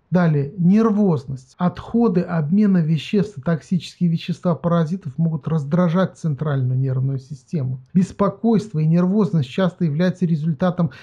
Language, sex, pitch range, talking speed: Russian, male, 145-175 Hz, 110 wpm